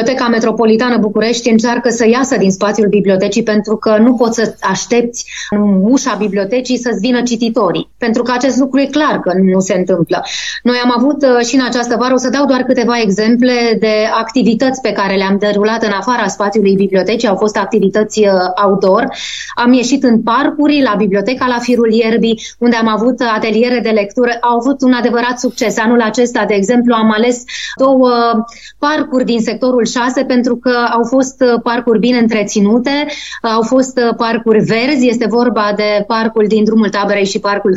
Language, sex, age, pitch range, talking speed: Romanian, female, 20-39, 215-255 Hz, 170 wpm